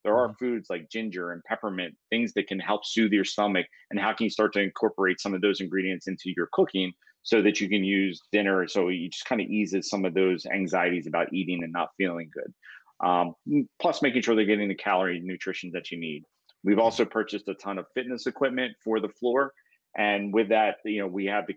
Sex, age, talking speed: male, 30-49, 225 wpm